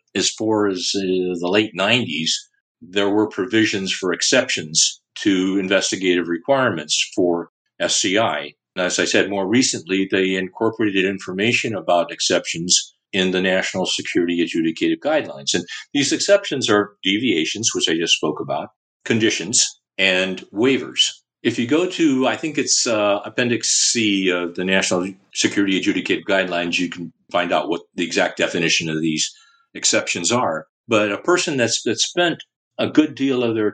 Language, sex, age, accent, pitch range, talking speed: English, male, 50-69, American, 95-130 Hz, 150 wpm